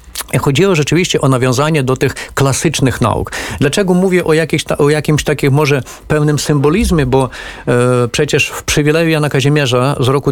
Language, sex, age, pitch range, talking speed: Polish, male, 40-59, 130-160 Hz, 165 wpm